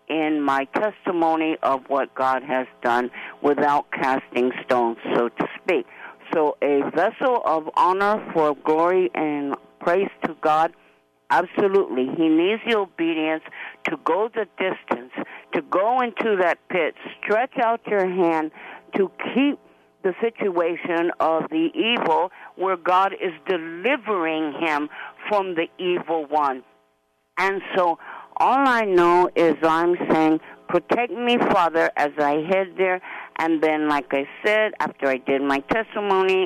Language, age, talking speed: English, 50-69, 140 wpm